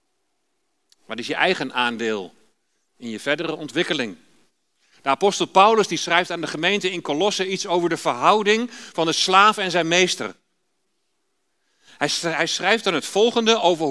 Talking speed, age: 150 wpm, 40-59